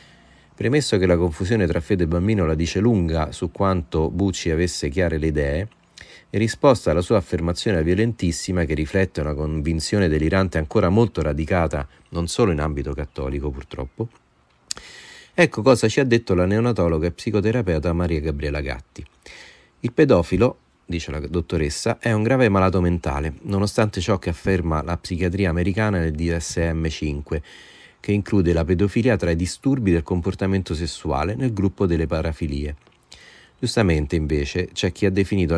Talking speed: 150 wpm